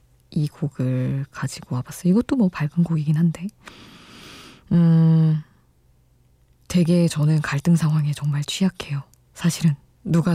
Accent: native